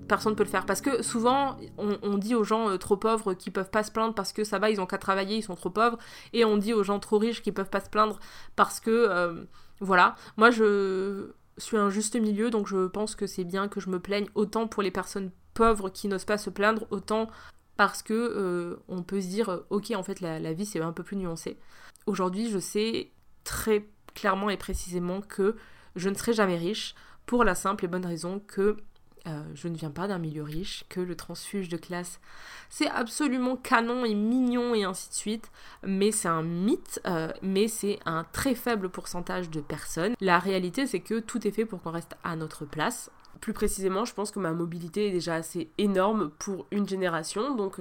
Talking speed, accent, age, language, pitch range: 220 wpm, French, 20-39, French, 170-215 Hz